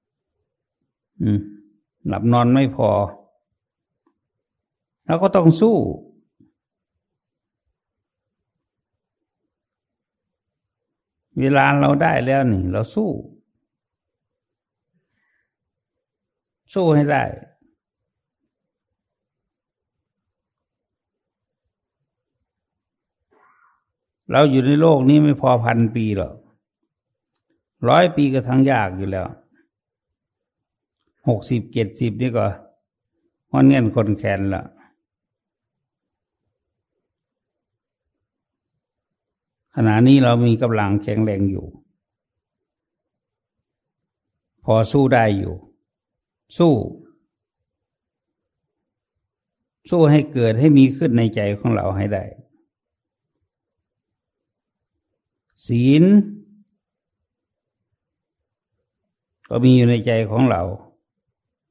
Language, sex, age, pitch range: English, male, 60-79, 105-140 Hz